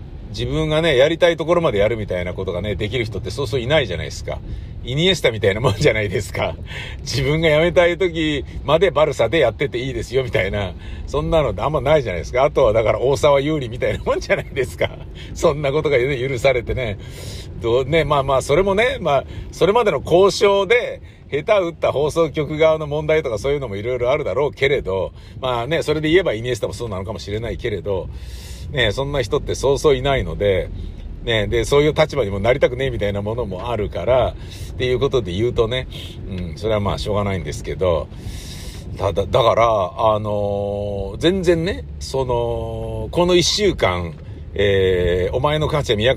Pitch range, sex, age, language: 95-150 Hz, male, 50-69, Japanese